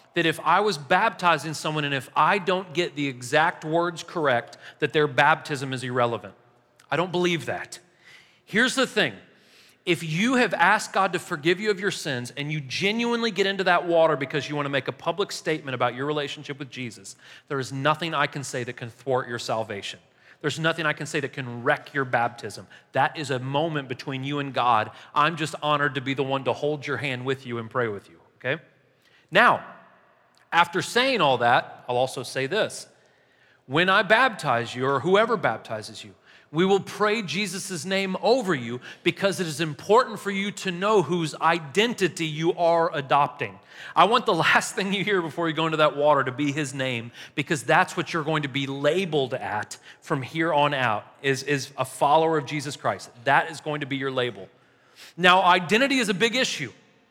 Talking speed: 200 wpm